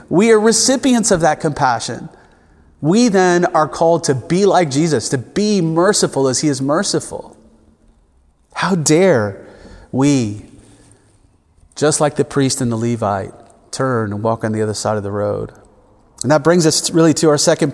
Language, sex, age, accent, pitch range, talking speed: English, male, 30-49, American, 115-175 Hz, 165 wpm